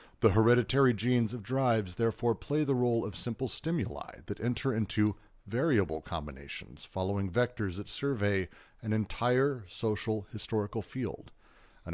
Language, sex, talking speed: English, male, 135 wpm